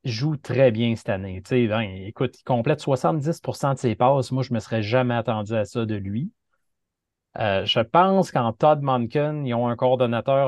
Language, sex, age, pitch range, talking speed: French, male, 30-49, 115-145 Hz, 195 wpm